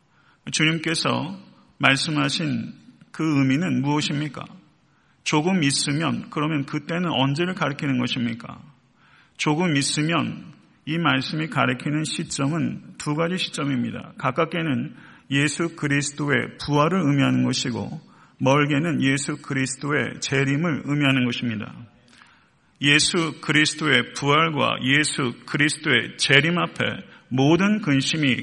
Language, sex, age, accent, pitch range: Korean, male, 40-59, native, 135-155 Hz